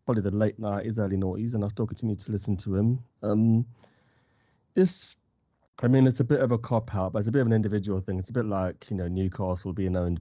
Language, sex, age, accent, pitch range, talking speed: English, male, 20-39, British, 100-120 Hz, 240 wpm